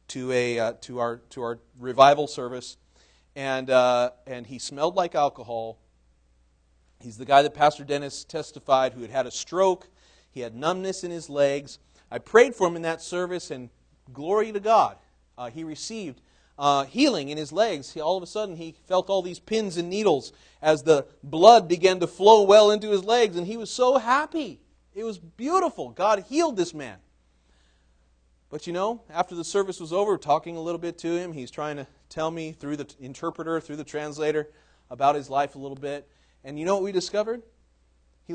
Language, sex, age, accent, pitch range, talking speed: English, male, 40-59, American, 115-180 Hz, 195 wpm